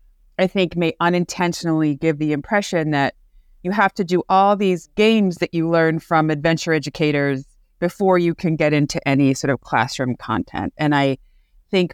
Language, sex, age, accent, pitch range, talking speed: English, female, 30-49, American, 140-175 Hz, 170 wpm